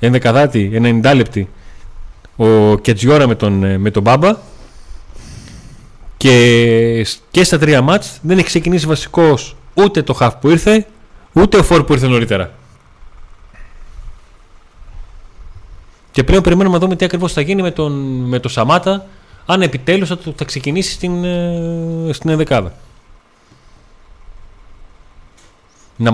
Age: 30-49